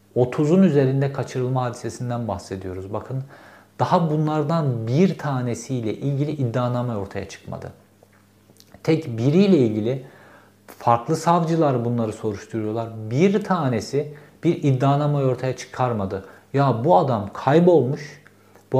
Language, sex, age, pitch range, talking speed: Turkish, male, 50-69, 115-155 Hz, 100 wpm